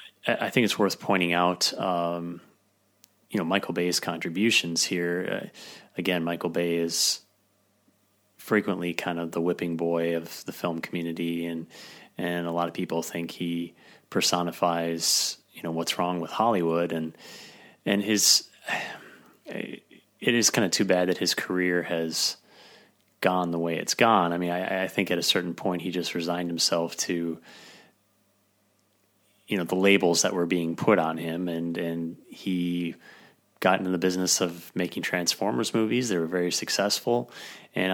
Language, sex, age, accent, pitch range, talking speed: English, male, 30-49, American, 85-95 Hz, 160 wpm